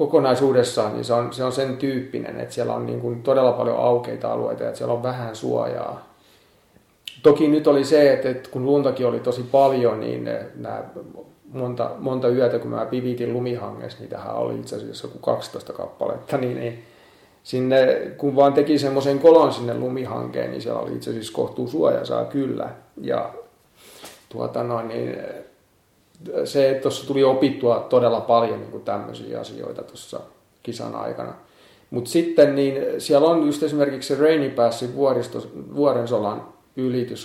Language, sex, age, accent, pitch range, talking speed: Finnish, male, 30-49, native, 120-140 Hz, 150 wpm